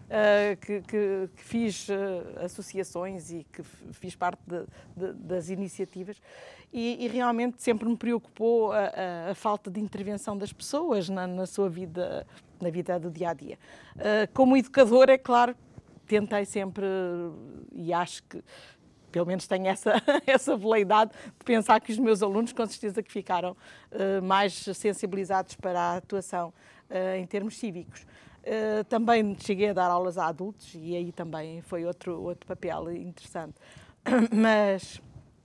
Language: Portuguese